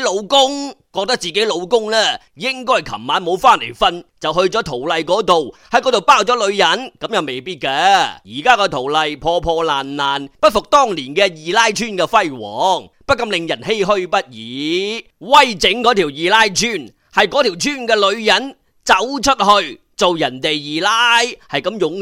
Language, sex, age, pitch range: Chinese, male, 30-49, 175-245 Hz